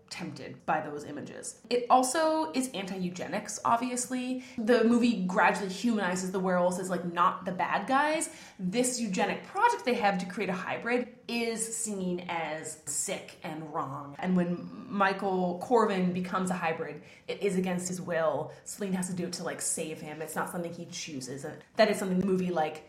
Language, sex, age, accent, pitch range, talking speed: English, female, 20-39, American, 170-235 Hz, 180 wpm